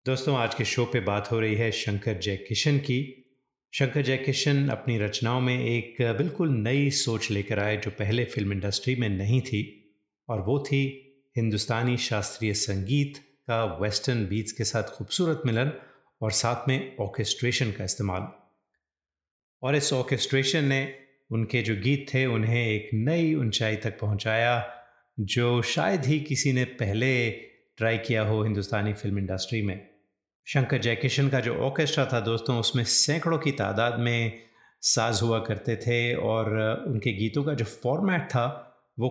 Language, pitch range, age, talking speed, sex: Hindi, 110-130 Hz, 30-49, 155 wpm, male